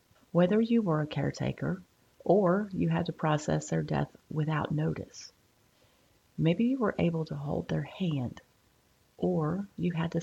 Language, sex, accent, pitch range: English, female, American, 145-175 Hz